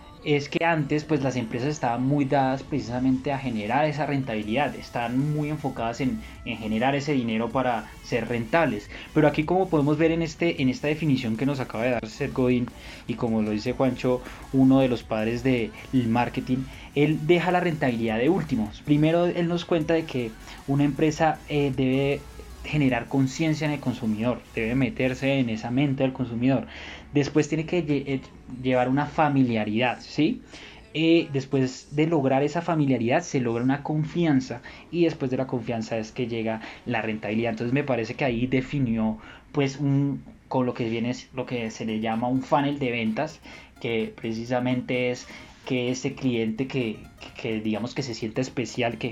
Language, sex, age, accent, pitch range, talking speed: Spanish, male, 20-39, Colombian, 120-145 Hz, 175 wpm